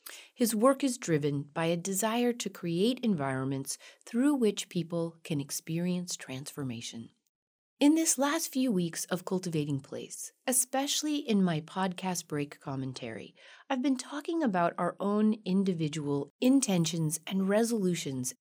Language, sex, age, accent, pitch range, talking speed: English, female, 40-59, American, 150-220 Hz, 130 wpm